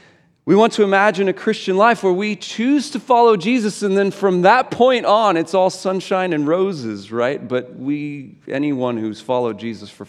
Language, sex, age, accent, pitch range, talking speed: English, male, 40-59, American, 135-195 Hz, 190 wpm